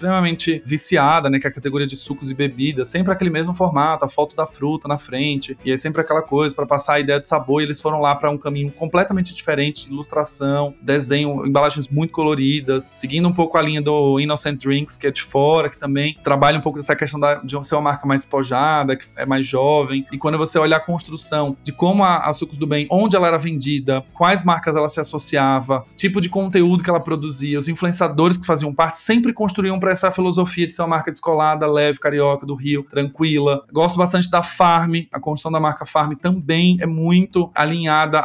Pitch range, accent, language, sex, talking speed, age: 145-170 Hz, Brazilian, Portuguese, male, 215 wpm, 20-39